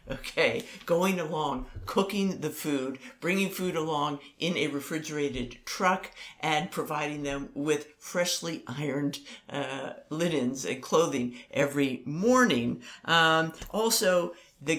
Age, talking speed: 50-69, 115 wpm